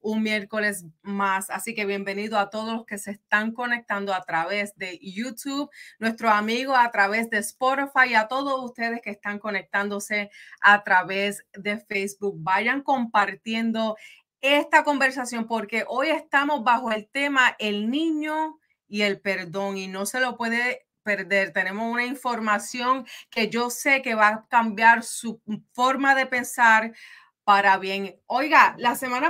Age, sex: 30-49, female